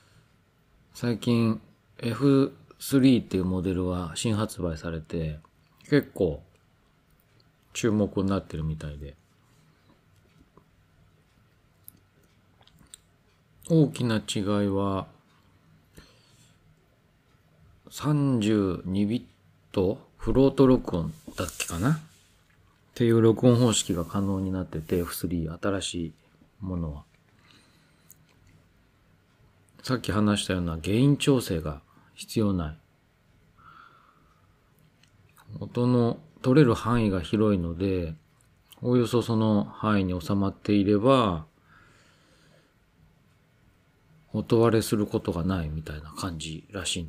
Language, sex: Japanese, male